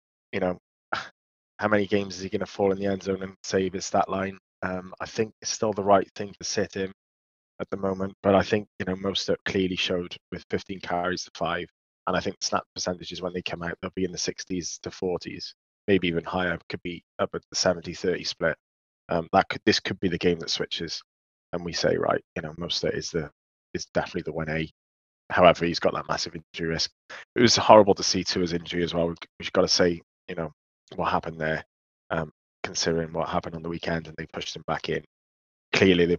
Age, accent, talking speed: 20-39, British, 230 wpm